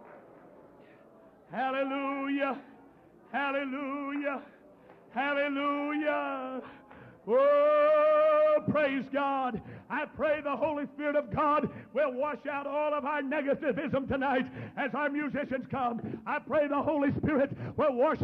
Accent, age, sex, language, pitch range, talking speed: American, 60-79, male, English, 235-305 Hz, 105 wpm